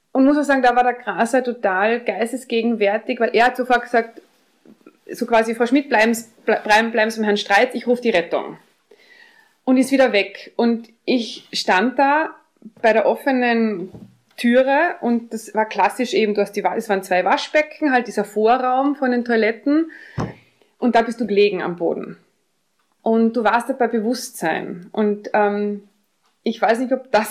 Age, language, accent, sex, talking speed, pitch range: 20-39, German, German, female, 170 wpm, 215-260 Hz